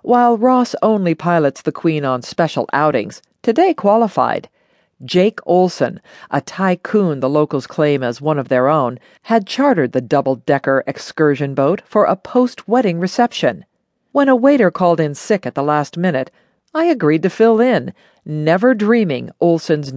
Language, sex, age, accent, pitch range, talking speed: English, female, 50-69, American, 150-215 Hz, 160 wpm